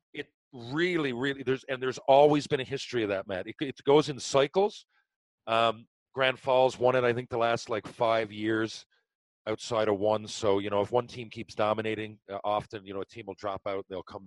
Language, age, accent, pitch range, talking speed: English, 40-59, American, 105-135 Hz, 220 wpm